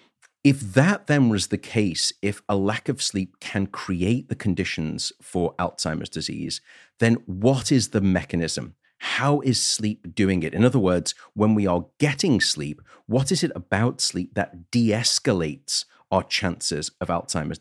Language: English